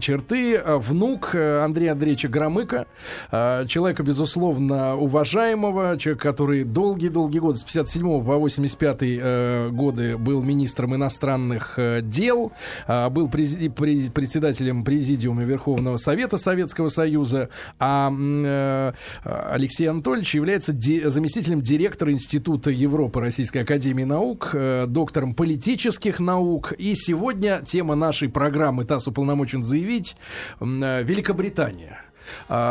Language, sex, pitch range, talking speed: Russian, male, 130-165 Hz, 90 wpm